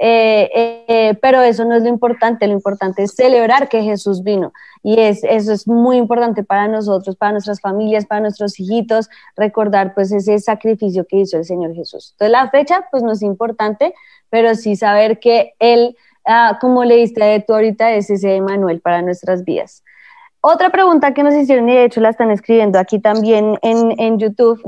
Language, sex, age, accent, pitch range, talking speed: Spanish, female, 20-39, Colombian, 205-250 Hz, 190 wpm